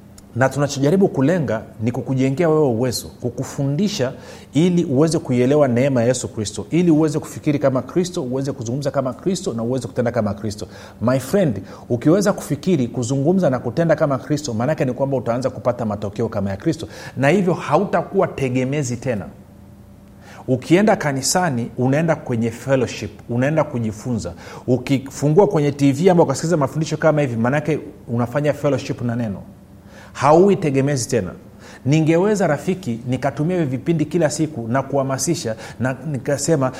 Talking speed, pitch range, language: 140 wpm, 125-175 Hz, Swahili